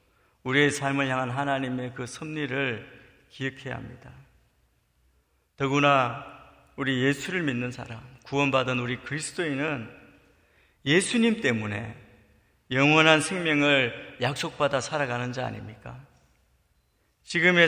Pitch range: 120-155 Hz